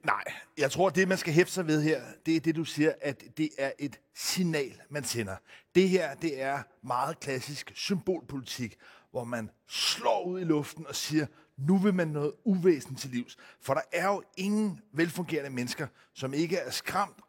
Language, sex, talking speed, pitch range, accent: Danish, male, 195 wpm, 145-185 Hz, native